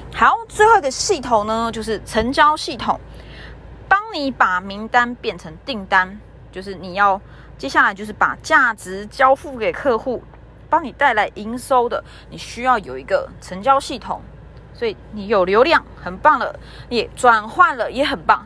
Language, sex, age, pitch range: Chinese, female, 20-39, 210-310 Hz